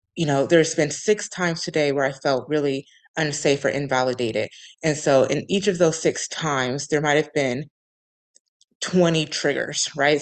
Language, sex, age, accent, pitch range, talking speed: English, female, 20-39, American, 140-170 Hz, 170 wpm